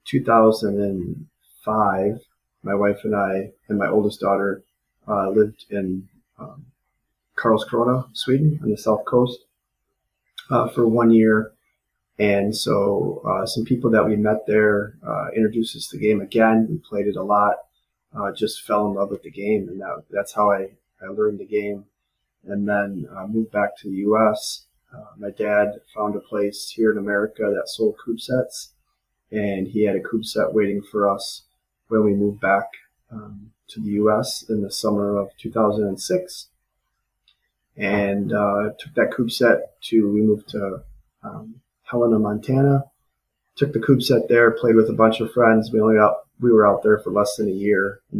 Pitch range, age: 100-110 Hz, 30-49